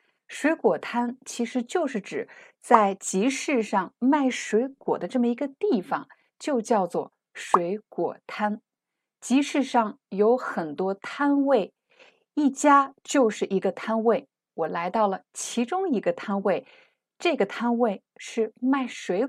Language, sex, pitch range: Chinese, female, 205-275 Hz